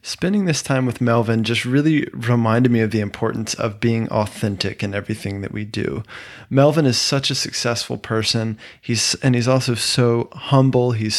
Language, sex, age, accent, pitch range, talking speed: English, male, 20-39, American, 110-135 Hz, 175 wpm